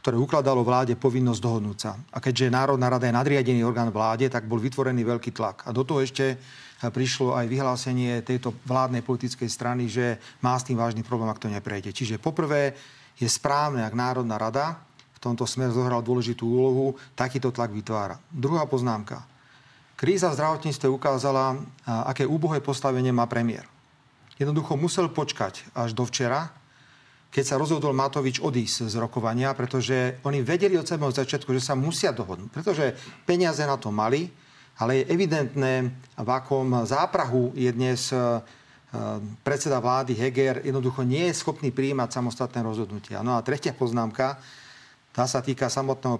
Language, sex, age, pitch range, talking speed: Slovak, male, 40-59, 120-140 Hz, 155 wpm